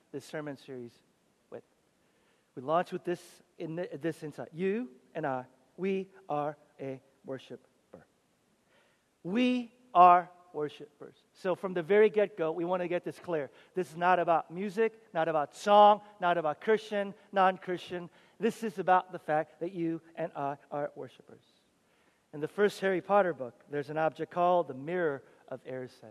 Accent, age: American, 50-69